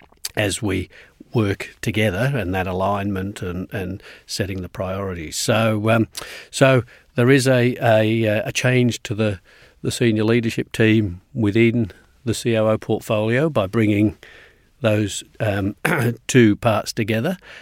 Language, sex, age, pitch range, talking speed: English, male, 50-69, 95-115 Hz, 130 wpm